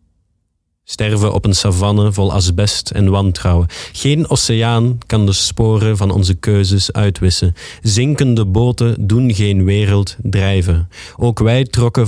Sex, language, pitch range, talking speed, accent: male, Dutch, 90-110 Hz, 130 wpm, Dutch